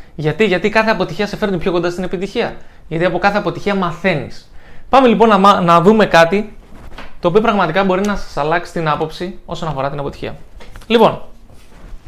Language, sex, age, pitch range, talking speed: Greek, male, 20-39, 155-210 Hz, 175 wpm